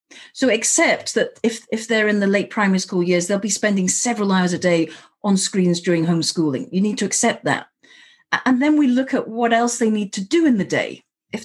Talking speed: 225 wpm